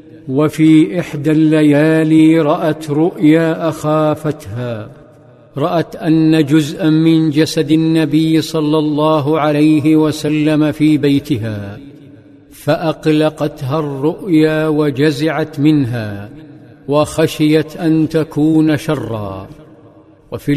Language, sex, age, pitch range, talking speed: Arabic, male, 50-69, 150-160 Hz, 80 wpm